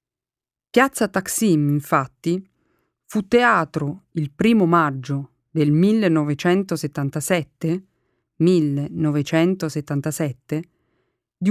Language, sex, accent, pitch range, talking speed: Italian, female, native, 150-195 Hz, 65 wpm